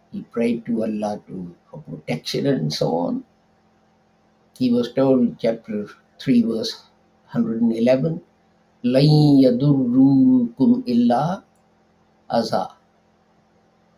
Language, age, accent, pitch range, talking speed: English, 60-79, Indian, 130-210 Hz, 100 wpm